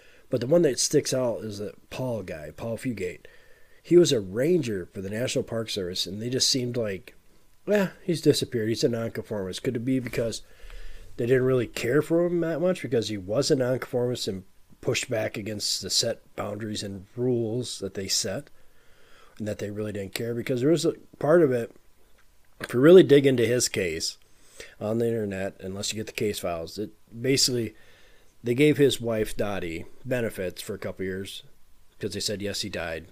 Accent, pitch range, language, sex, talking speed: American, 100-135 Hz, English, male, 200 wpm